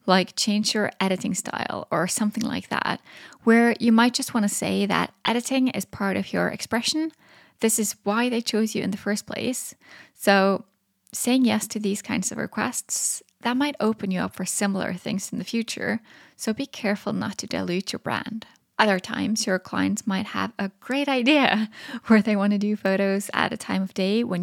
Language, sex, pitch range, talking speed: English, female, 195-235 Hz, 195 wpm